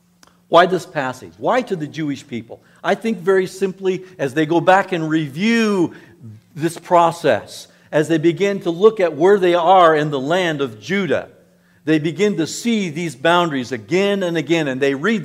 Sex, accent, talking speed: male, American, 180 wpm